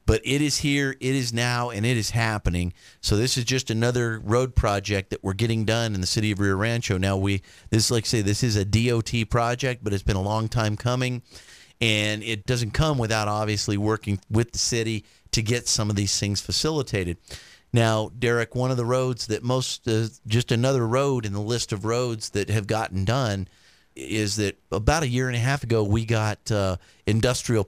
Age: 40-59